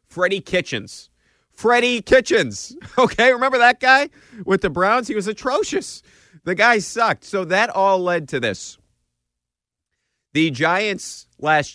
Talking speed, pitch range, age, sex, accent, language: 135 wpm, 115-175 Hz, 30-49, male, American, English